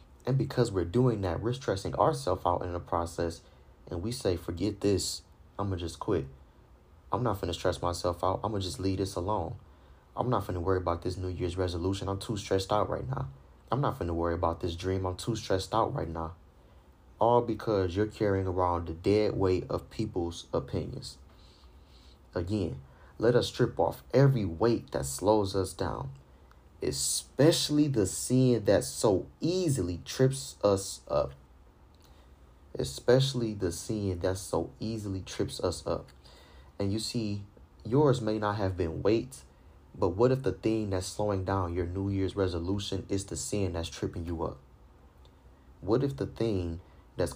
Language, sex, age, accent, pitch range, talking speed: English, male, 30-49, American, 80-105 Hz, 175 wpm